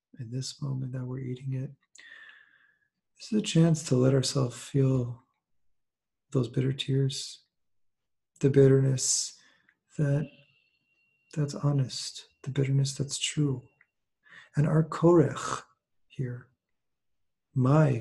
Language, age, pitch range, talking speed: English, 40-59, 125-145 Hz, 105 wpm